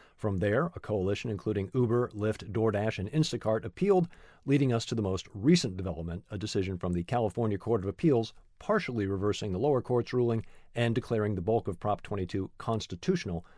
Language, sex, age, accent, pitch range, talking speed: English, male, 50-69, American, 95-125 Hz, 175 wpm